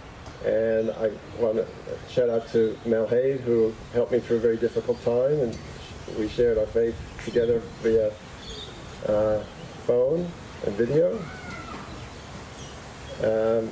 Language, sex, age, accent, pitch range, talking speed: English, male, 40-59, American, 110-135 Hz, 125 wpm